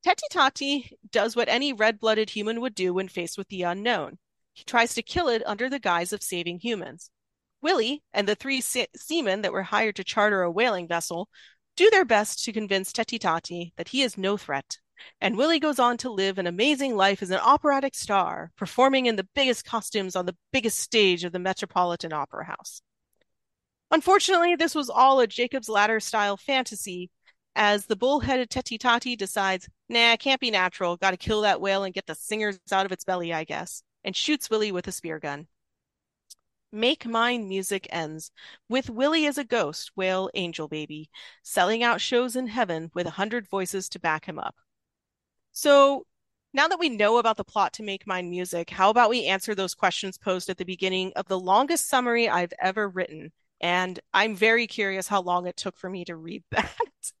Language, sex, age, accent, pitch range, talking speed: English, female, 30-49, American, 185-245 Hz, 195 wpm